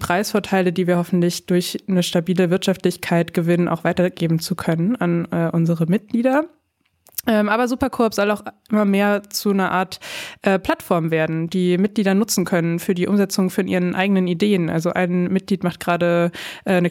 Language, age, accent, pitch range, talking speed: German, 20-39, German, 180-205 Hz, 165 wpm